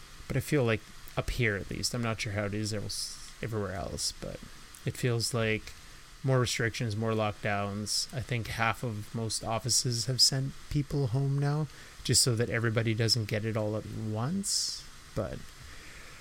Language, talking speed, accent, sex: English, 170 wpm, American, male